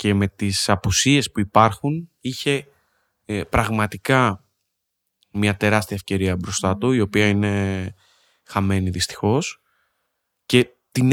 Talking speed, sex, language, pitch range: 115 wpm, male, Greek, 110-145 Hz